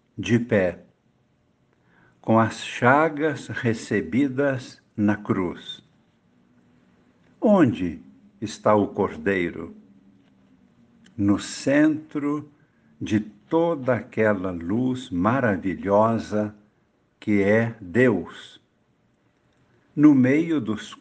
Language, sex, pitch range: Portuguese, male, 100-135 Hz